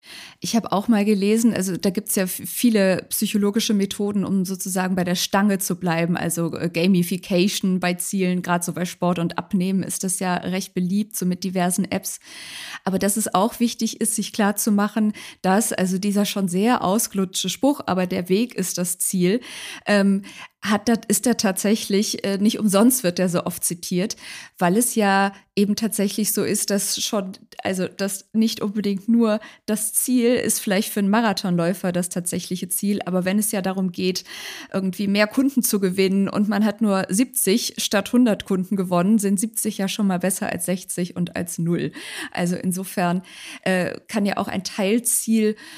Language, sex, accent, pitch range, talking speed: German, female, German, 185-215 Hz, 180 wpm